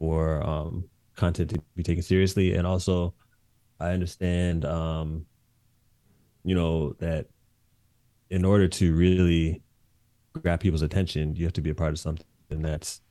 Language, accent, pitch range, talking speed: English, American, 80-105 Hz, 140 wpm